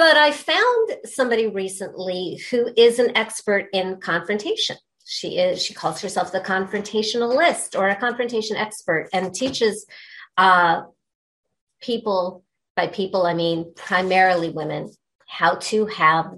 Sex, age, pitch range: female, 40-59, 185-235 Hz